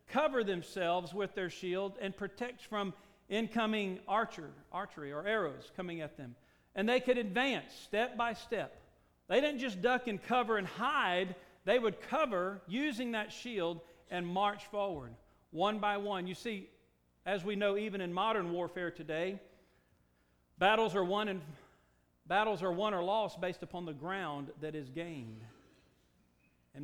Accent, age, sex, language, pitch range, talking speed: American, 40-59, male, English, 160-210 Hz, 155 wpm